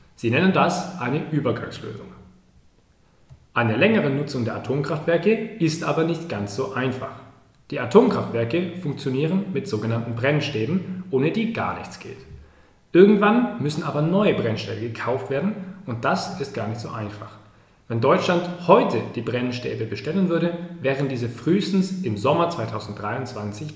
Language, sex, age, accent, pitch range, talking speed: German, male, 40-59, German, 115-175 Hz, 135 wpm